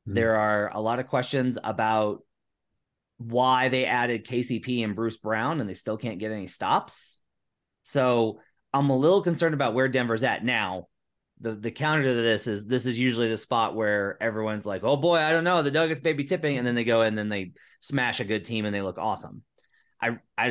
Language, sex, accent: English, male, American